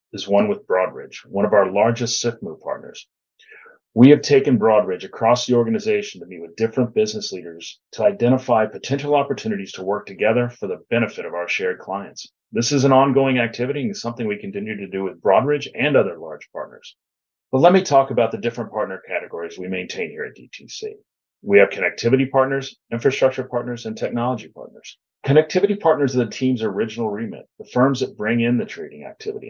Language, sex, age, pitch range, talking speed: English, male, 40-59, 115-190 Hz, 185 wpm